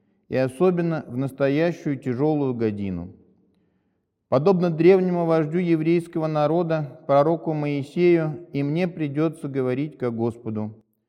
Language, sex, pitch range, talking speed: Russian, male, 120-165 Hz, 105 wpm